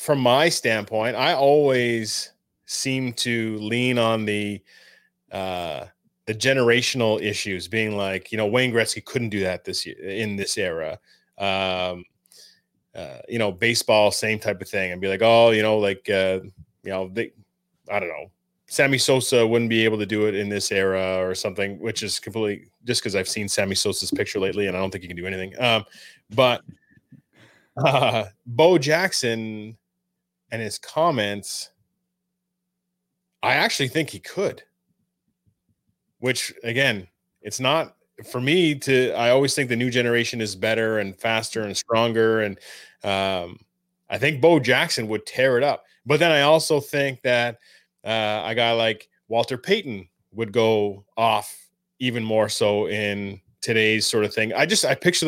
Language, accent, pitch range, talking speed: English, American, 105-135 Hz, 165 wpm